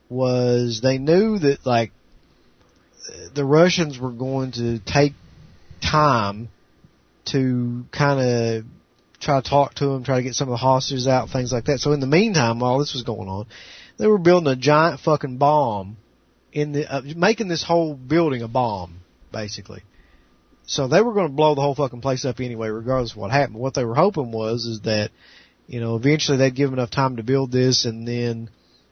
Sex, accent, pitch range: male, American, 115-145 Hz